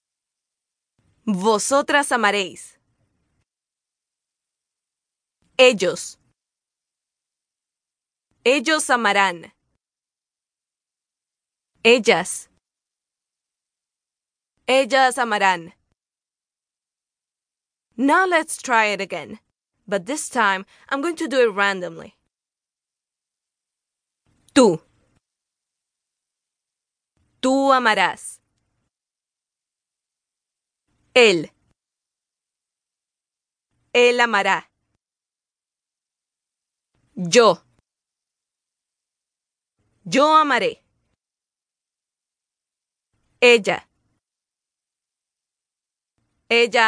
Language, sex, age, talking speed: English, female, 20-39, 40 wpm